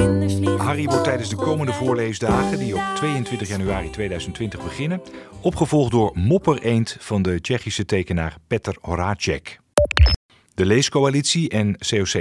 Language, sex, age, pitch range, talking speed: Dutch, male, 40-59, 95-125 Hz, 130 wpm